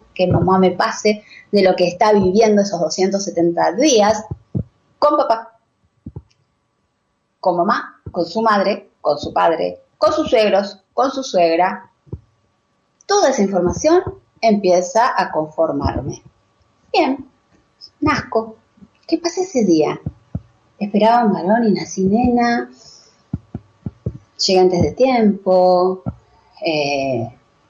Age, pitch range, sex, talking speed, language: 30-49, 170-210 Hz, female, 110 wpm, Spanish